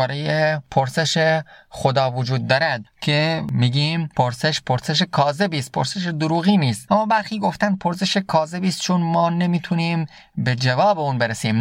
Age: 30-49